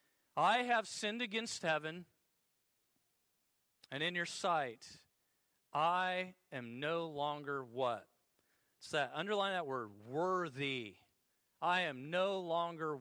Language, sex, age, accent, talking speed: English, male, 40-59, American, 110 wpm